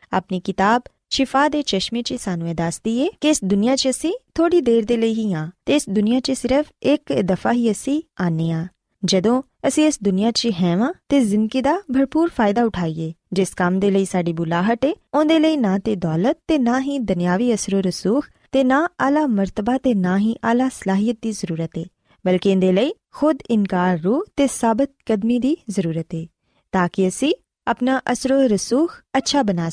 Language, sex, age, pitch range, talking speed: Punjabi, female, 20-39, 185-270 Hz, 100 wpm